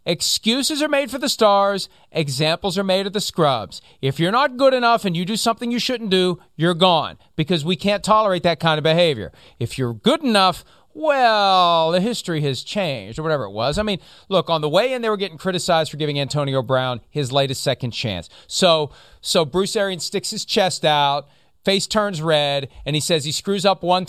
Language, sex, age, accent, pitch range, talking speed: English, male, 40-59, American, 155-230 Hz, 210 wpm